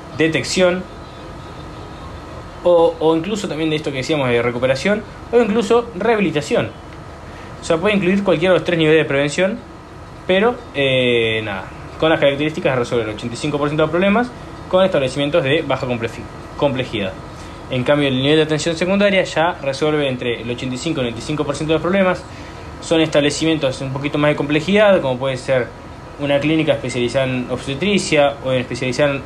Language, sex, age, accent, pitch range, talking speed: Spanish, male, 20-39, Argentinian, 120-170 Hz, 160 wpm